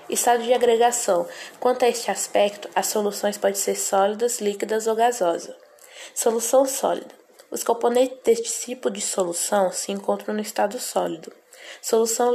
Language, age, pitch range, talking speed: Portuguese, 10-29, 205-245 Hz, 140 wpm